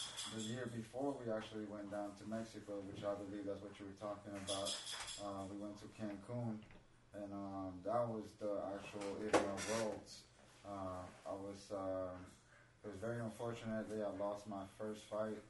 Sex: male